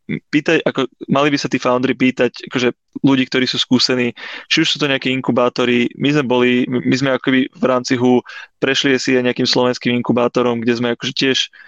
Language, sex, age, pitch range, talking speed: Czech, male, 20-39, 125-140 Hz, 200 wpm